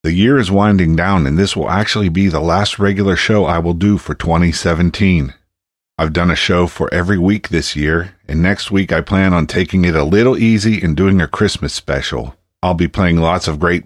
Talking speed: 215 wpm